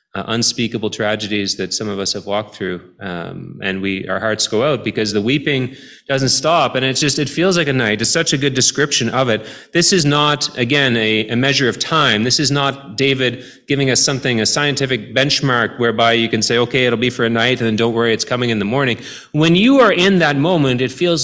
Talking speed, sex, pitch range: 235 wpm, male, 110-140 Hz